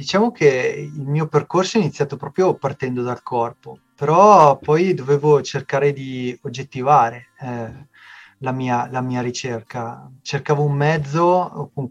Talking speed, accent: 135 wpm, native